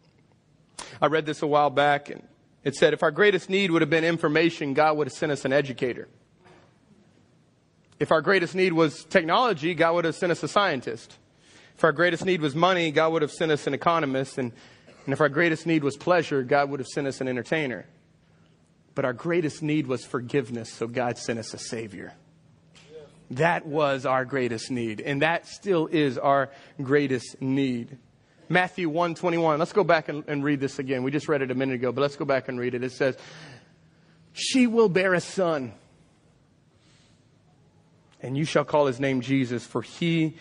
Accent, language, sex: American, English, male